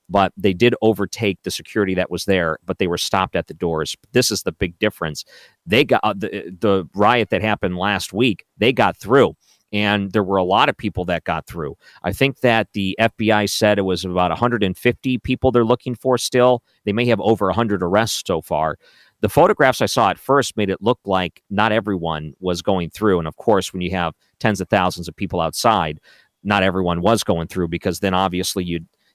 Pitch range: 90-115 Hz